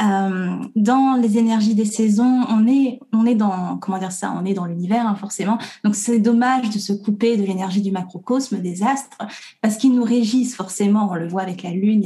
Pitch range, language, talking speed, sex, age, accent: 195-240 Hz, French, 215 wpm, female, 20-39, French